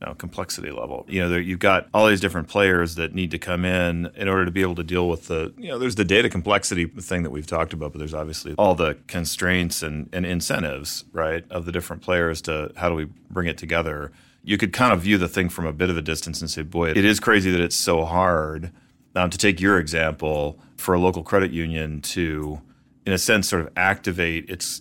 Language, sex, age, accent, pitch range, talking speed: English, male, 30-49, American, 80-95 Hz, 240 wpm